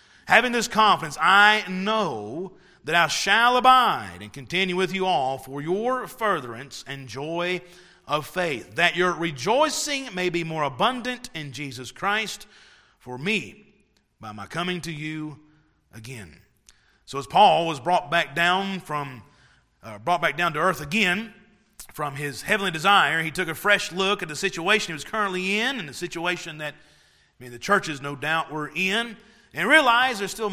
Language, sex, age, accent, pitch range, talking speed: English, male, 40-59, American, 160-205 Hz, 170 wpm